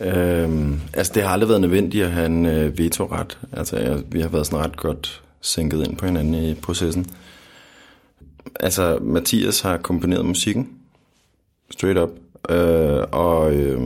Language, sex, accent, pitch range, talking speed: Danish, male, native, 80-100 Hz, 135 wpm